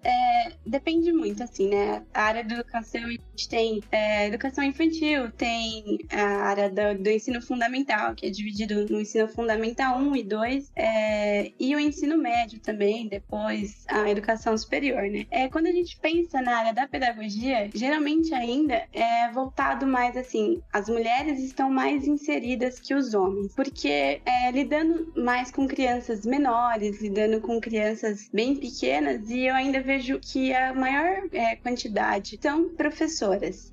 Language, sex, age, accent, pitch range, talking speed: Portuguese, female, 20-39, Brazilian, 215-275 Hz, 160 wpm